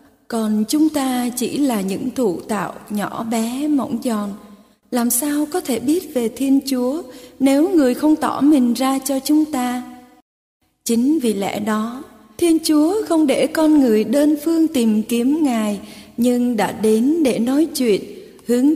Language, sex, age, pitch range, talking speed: Vietnamese, female, 20-39, 220-285 Hz, 165 wpm